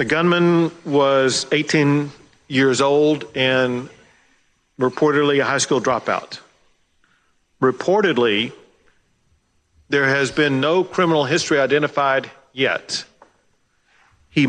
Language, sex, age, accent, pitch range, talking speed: English, male, 50-69, American, 135-155 Hz, 90 wpm